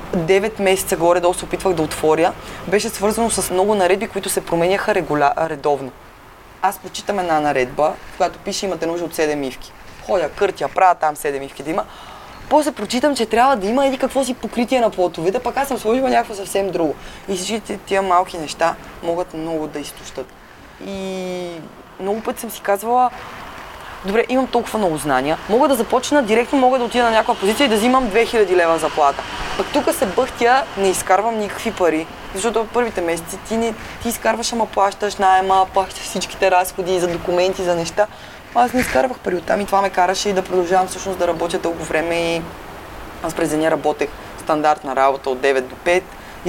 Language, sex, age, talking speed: Bulgarian, female, 20-39, 185 wpm